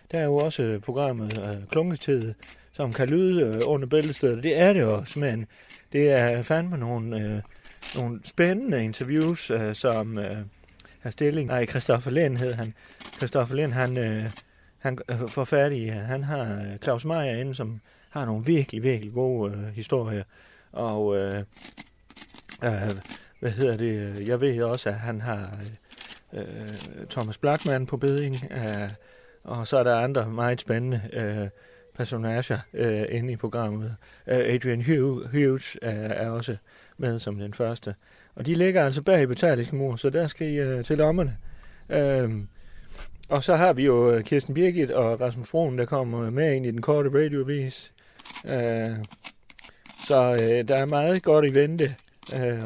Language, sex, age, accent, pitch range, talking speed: Danish, male, 30-49, native, 110-140 Hz, 165 wpm